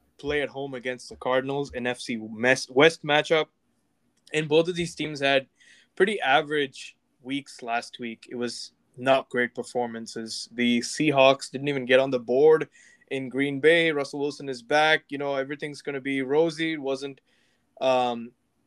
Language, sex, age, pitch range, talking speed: English, male, 20-39, 125-150 Hz, 165 wpm